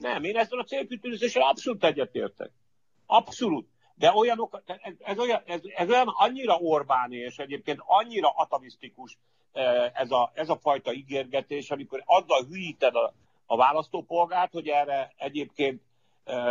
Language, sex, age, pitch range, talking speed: Hungarian, male, 60-79, 125-195 Hz, 135 wpm